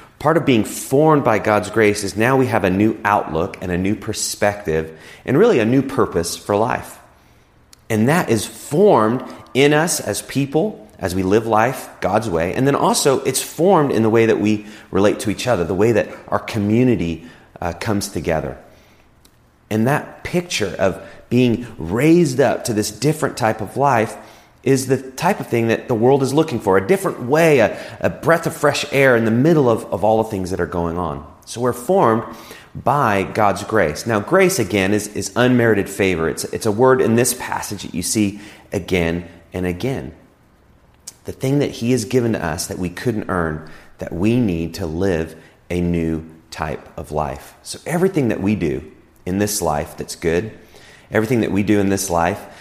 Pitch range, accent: 90-125 Hz, American